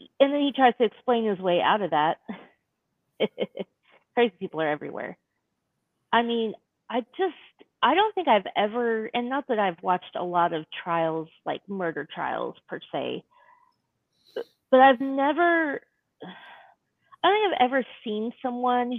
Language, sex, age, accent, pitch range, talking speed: English, female, 30-49, American, 180-250 Hz, 150 wpm